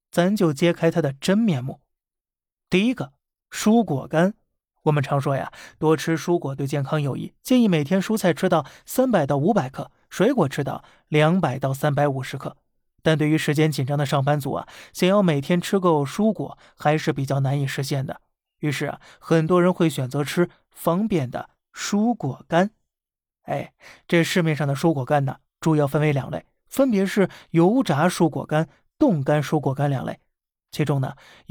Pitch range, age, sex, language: 145-175 Hz, 20-39, male, Chinese